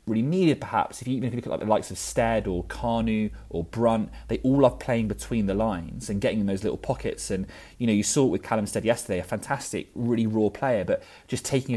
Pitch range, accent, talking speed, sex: 100-130 Hz, British, 255 wpm, male